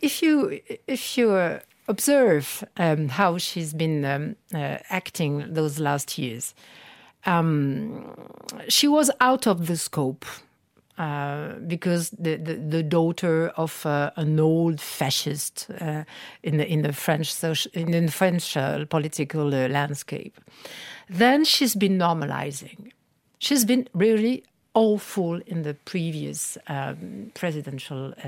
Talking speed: 125 wpm